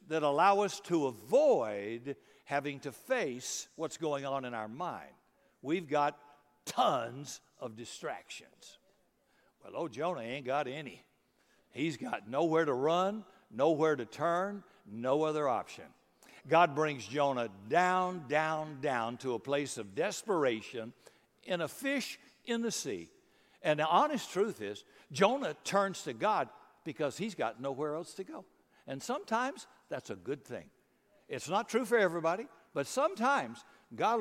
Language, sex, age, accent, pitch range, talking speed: English, male, 60-79, American, 140-190 Hz, 145 wpm